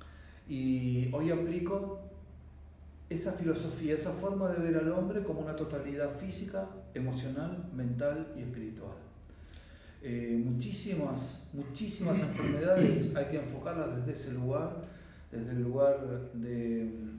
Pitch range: 125-175 Hz